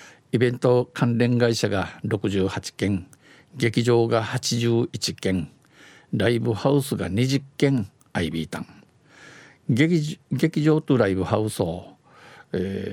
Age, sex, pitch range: 50-69, male, 100-135 Hz